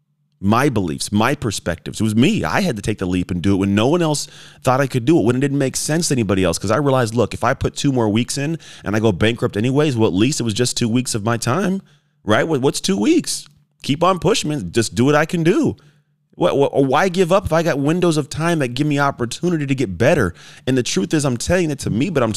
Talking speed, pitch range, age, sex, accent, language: 270 wpm, 110-150 Hz, 30-49, male, American, English